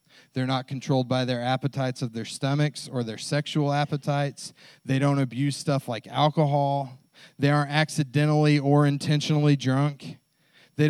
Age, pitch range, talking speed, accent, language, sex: 30-49, 130-155 Hz, 145 wpm, American, English, male